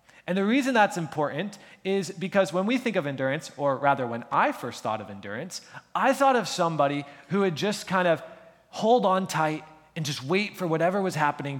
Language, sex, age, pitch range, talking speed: English, male, 20-39, 145-195 Hz, 200 wpm